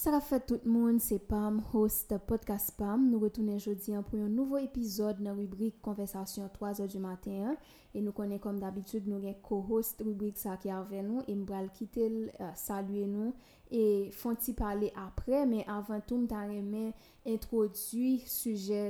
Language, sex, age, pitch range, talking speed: English, female, 20-39, 205-235 Hz, 165 wpm